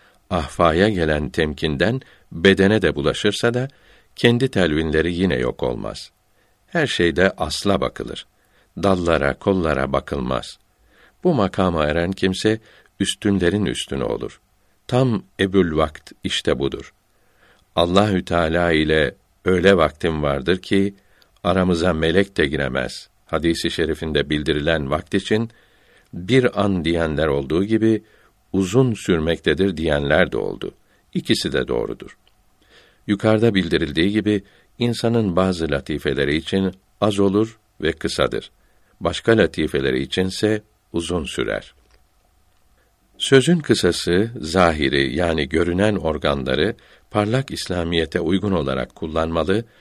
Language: Turkish